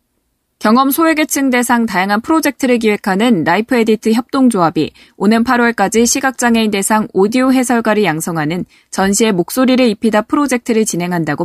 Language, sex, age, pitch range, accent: Korean, female, 20-39, 195-250 Hz, native